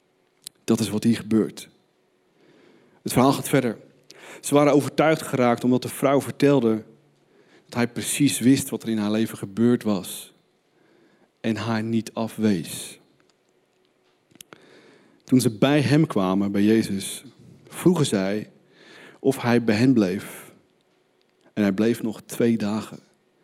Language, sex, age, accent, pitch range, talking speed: Dutch, male, 40-59, Dutch, 115-185 Hz, 135 wpm